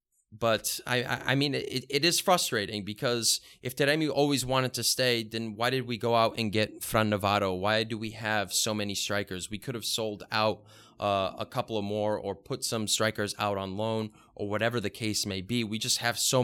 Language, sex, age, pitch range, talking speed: English, male, 20-39, 105-130 Hz, 215 wpm